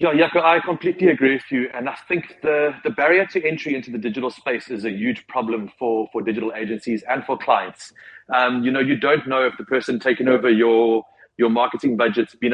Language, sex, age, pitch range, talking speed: English, male, 30-49, 115-145 Hz, 215 wpm